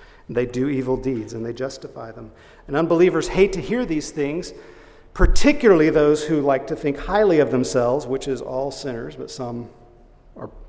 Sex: male